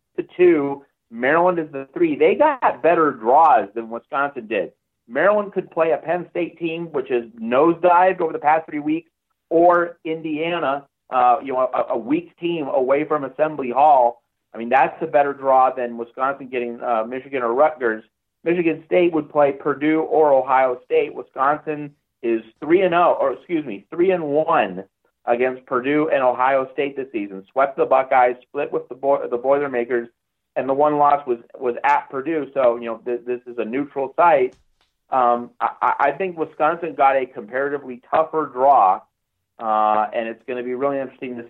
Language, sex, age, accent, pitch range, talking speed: English, male, 40-59, American, 125-160 Hz, 180 wpm